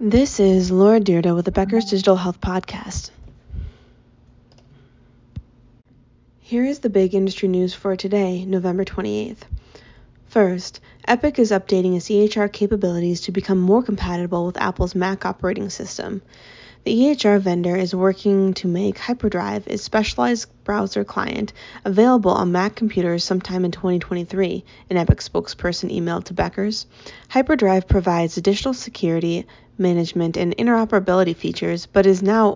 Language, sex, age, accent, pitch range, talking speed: English, female, 20-39, American, 175-205 Hz, 135 wpm